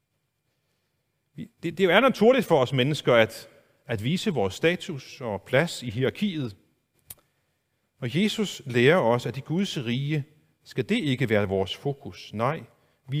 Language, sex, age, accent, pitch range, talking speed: Danish, male, 40-59, native, 115-160 Hz, 145 wpm